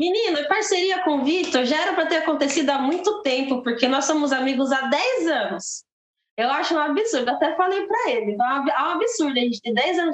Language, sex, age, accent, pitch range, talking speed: Portuguese, female, 20-39, Brazilian, 235-300 Hz, 220 wpm